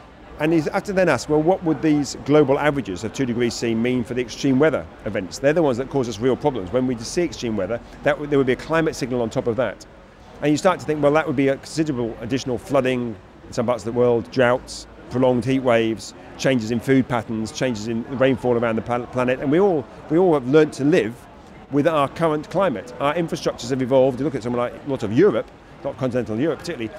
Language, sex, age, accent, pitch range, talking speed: English, male, 40-59, British, 125-160 Hz, 240 wpm